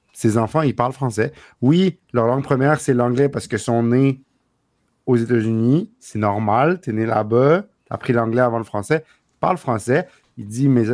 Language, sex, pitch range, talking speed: French, male, 110-140 Hz, 190 wpm